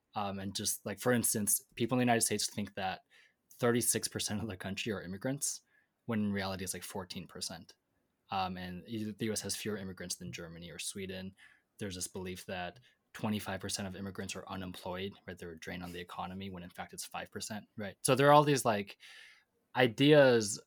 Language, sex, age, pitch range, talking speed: English, male, 20-39, 95-115 Hz, 190 wpm